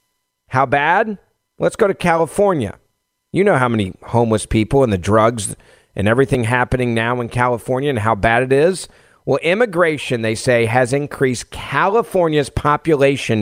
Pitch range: 115-165 Hz